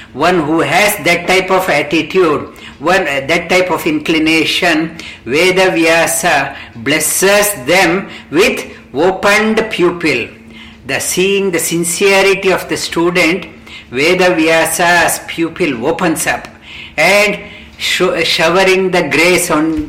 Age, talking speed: 50-69, 115 wpm